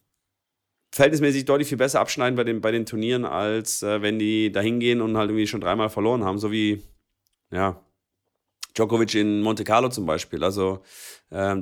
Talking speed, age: 170 wpm, 30-49